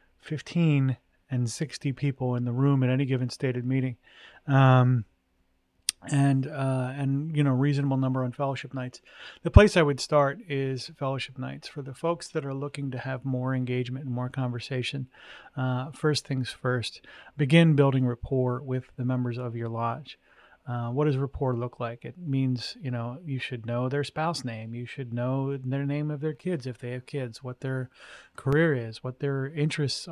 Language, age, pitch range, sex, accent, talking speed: English, 30-49, 125-145 Hz, male, American, 185 wpm